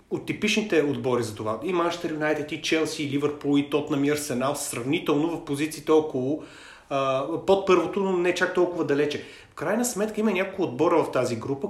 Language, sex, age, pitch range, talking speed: Bulgarian, male, 30-49, 125-170 Hz, 180 wpm